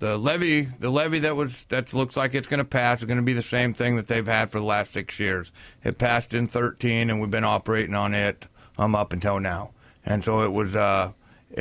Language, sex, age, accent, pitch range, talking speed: English, male, 50-69, American, 105-125 Hz, 240 wpm